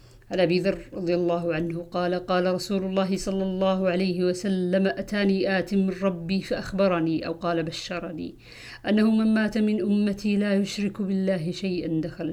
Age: 50-69